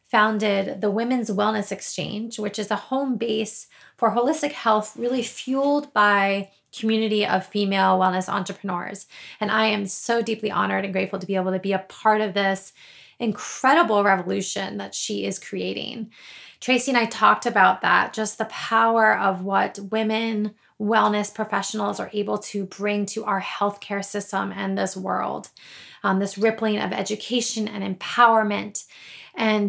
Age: 20-39